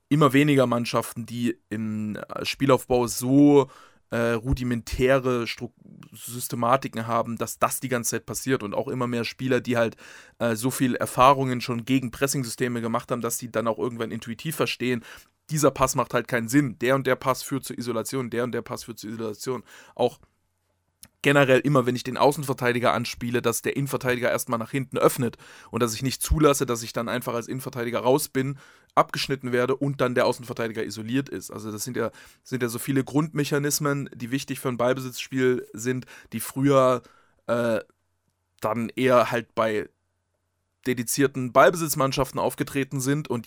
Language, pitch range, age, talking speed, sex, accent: German, 115-135 Hz, 20-39, 170 wpm, male, German